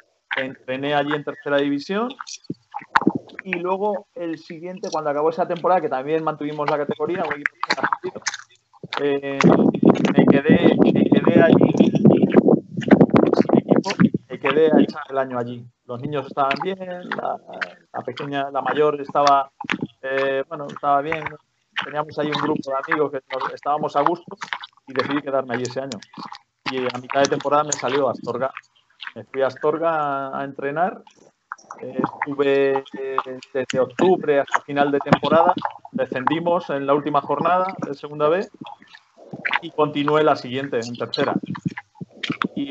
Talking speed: 130 wpm